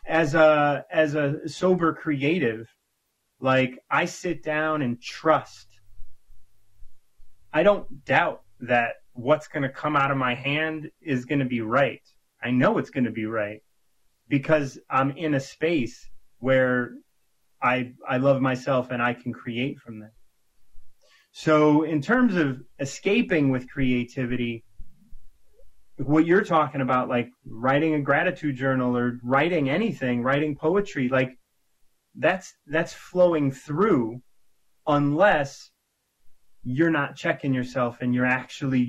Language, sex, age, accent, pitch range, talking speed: English, male, 30-49, American, 125-150 Hz, 135 wpm